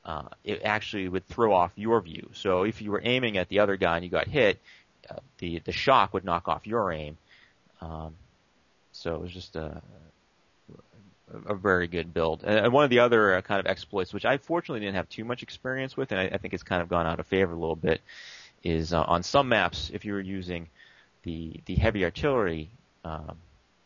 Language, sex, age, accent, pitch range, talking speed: English, male, 30-49, American, 85-105 Hz, 215 wpm